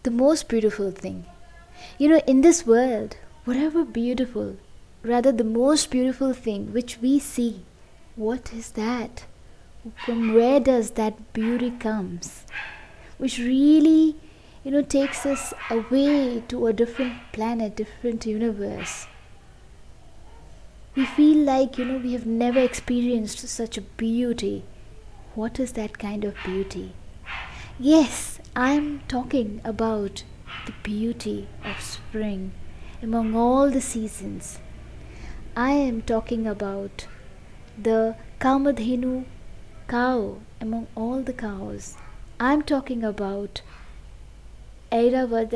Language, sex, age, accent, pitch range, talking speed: English, female, 20-39, Indian, 205-255 Hz, 115 wpm